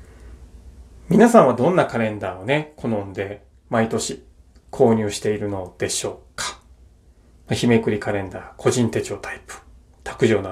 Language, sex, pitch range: Japanese, male, 95-140 Hz